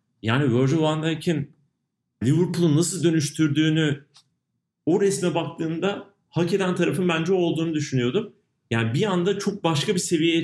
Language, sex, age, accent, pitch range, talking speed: Turkish, male, 40-59, native, 130-165 Hz, 130 wpm